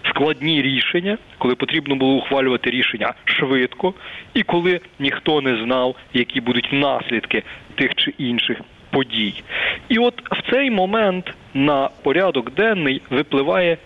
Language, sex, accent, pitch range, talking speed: Ukrainian, male, native, 125-185 Hz, 125 wpm